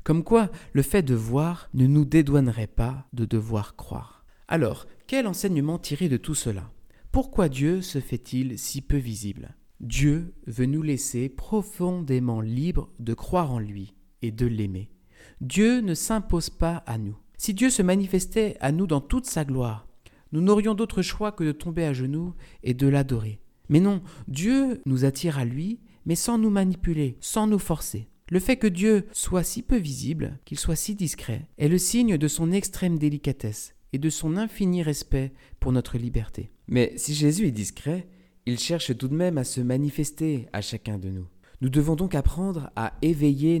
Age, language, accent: 50-69, French, French